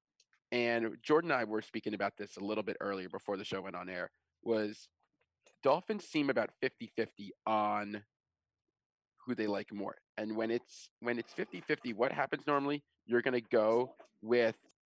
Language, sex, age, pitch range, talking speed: English, male, 30-49, 105-130 Hz, 170 wpm